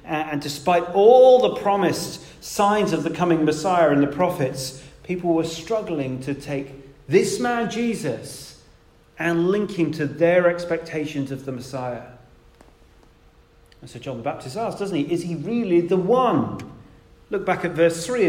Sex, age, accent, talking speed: male, 40-59, British, 160 wpm